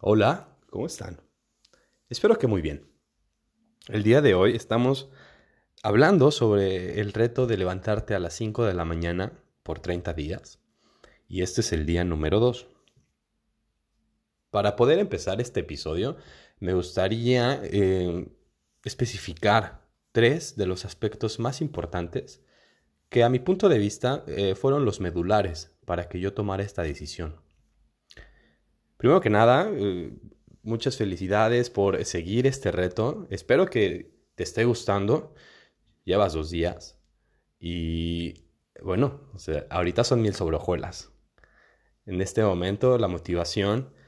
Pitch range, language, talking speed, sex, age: 85-115 Hz, Spanish, 130 wpm, male, 30-49